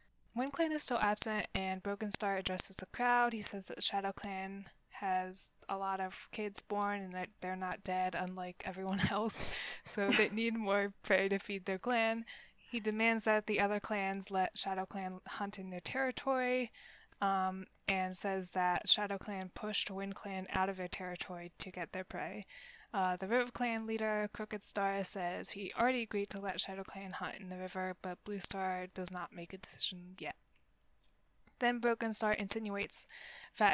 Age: 10-29